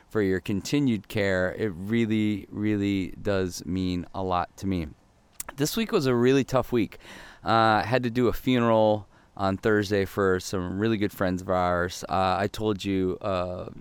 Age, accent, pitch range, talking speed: 30-49, American, 95-120 Hz, 180 wpm